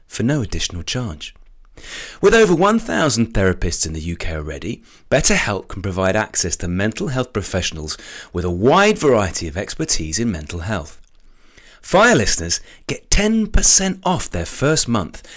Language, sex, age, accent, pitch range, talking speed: English, male, 30-49, British, 90-145 Hz, 145 wpm